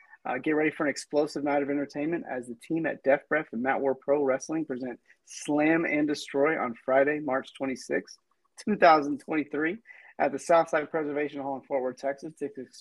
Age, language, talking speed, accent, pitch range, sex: 30-49, English, 190 wpm, American, 130-150 Hz, male